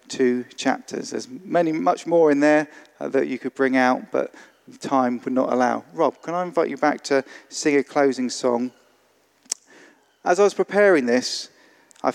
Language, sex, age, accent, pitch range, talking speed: English, male, 40-59, British, 130-175 Hz, 180 wpm